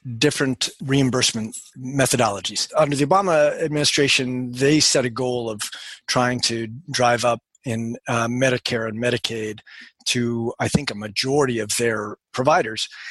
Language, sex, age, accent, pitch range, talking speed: English, male, 40-59, American, 125-165 Hz, 135 wpm